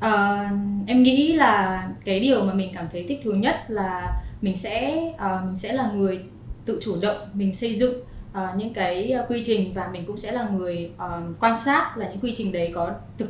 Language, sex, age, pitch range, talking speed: Vietnamese, female, 20-39, 185-235 Hz, 215 wpm